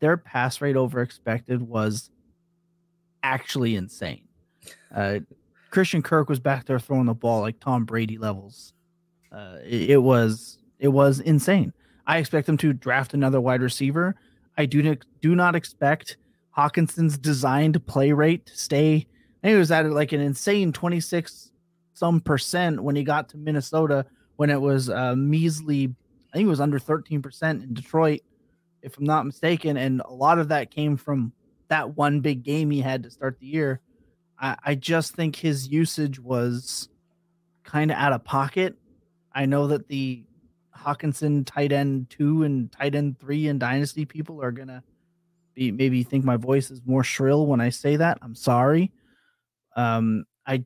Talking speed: 165 wpm